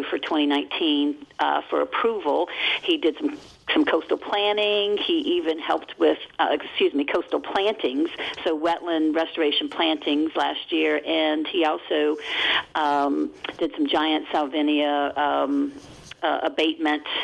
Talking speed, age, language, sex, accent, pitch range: 130 wpm, 50-69, English, female, American, 150-205 Hz